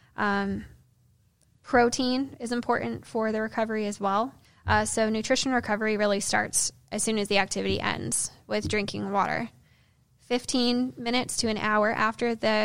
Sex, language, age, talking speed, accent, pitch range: female, English, 10-29, 145 wpm, American, 195-220 Hz